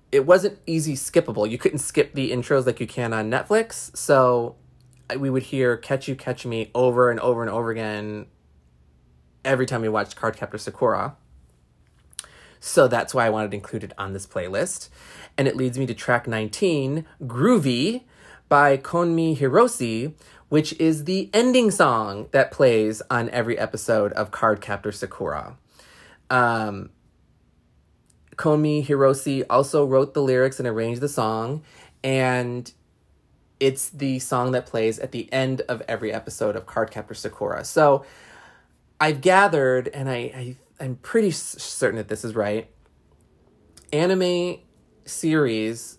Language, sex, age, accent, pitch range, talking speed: English, male, 20-39, American, 110-145 Hz, 140 wpm